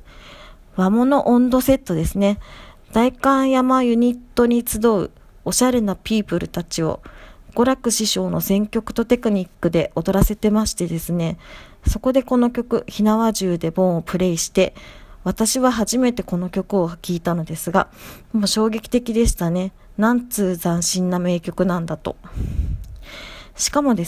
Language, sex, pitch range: Japanese, female, 175-235 Hz